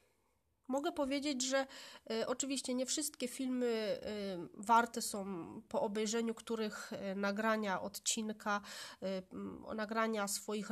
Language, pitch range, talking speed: Polish, 215-250 Hz, 90 wpm